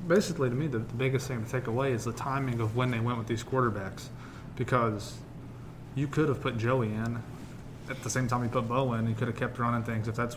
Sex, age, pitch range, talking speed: male, 30-49, 115-130 Hz, 245 wpm